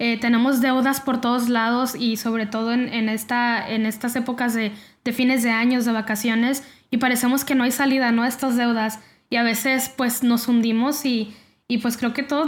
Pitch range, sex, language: 230-255 Hz, female, Spanish